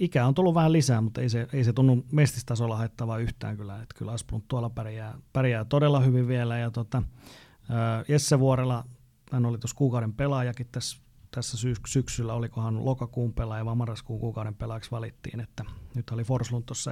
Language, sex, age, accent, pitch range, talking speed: Finnish, male, 30-49, native, 115-130 Hz, 175 wpm